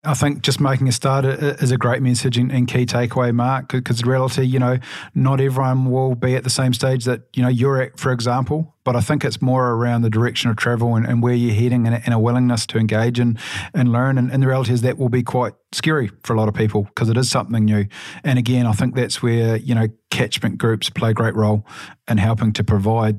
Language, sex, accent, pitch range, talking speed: English, male, Australian, 110-125 Hz, 245 wpm